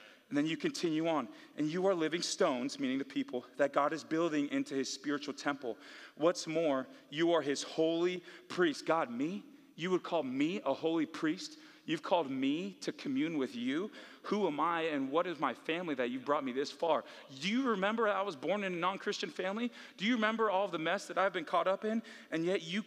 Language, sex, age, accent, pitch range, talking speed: English, male, 40-59, American, 145-200 Hz, 220 wpm